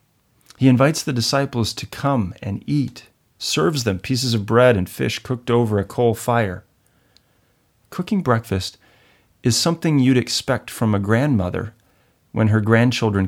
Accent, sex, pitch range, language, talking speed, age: American, male, 105-135 Hz, English, 145 wpm, 40-59